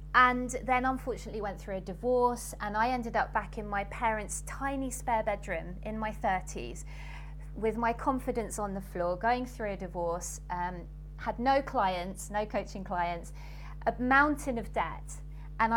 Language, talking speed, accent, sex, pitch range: English, 165 wpm, British, female, 170-230 Hz